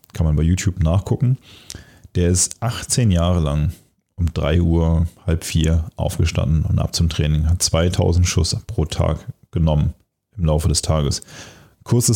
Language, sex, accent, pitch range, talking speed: German, male, German, 80-105 Hz, 155 wpm